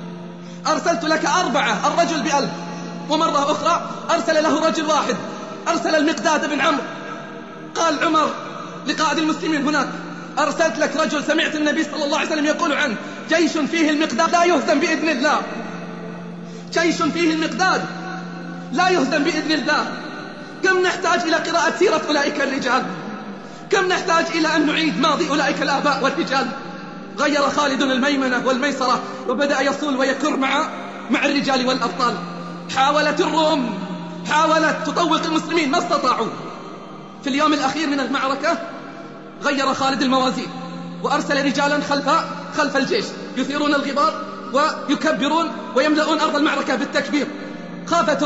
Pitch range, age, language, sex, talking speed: 275-320 Hz, 30-49, Arabic, male, 120 wpm